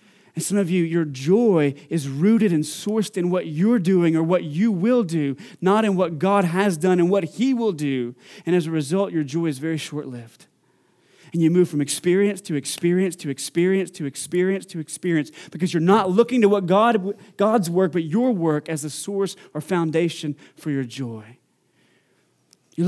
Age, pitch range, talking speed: 30-49, 150-195 Hz, 190 wpm